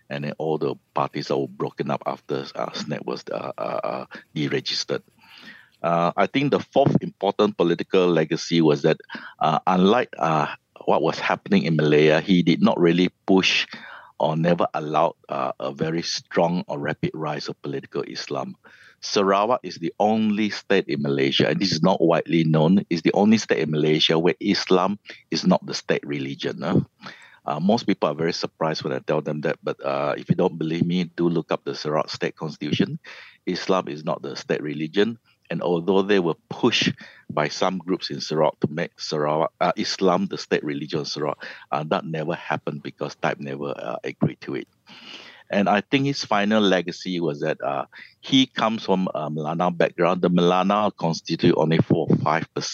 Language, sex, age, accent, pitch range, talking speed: English, male, 50-69, Malaysian, 75-95 Hz, 180 wpm